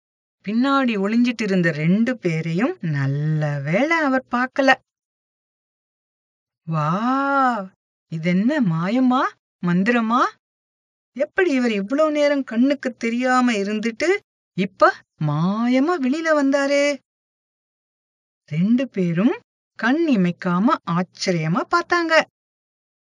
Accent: Indian